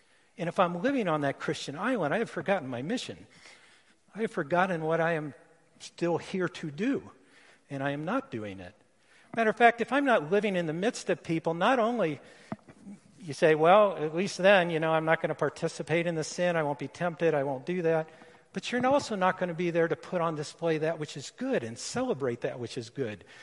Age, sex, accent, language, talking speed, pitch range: 50-69, male, American, English, 230 wpm, 135-185 Hz